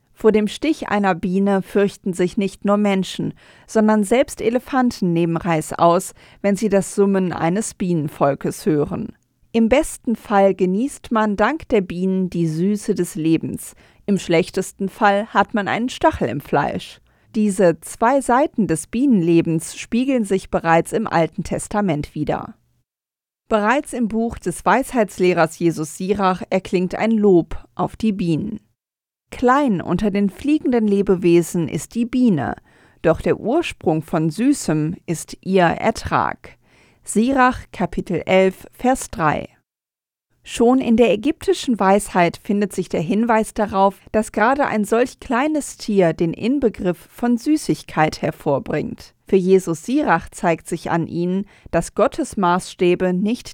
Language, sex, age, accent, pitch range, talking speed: German, female, 40-59, German, 175-230 Hz, 135 wpm